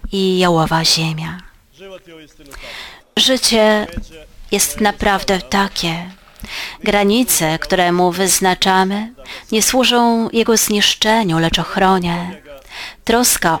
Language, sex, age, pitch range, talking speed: Polish, female, 30-49, 170-215 Hz, 80 wpm